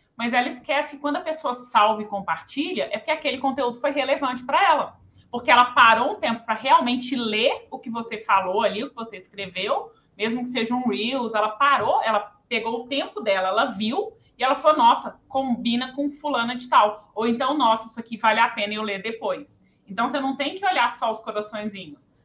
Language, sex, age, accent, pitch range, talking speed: Portuguese, female, 30-49, Brazilian, 220-275 Hz, 210 wpm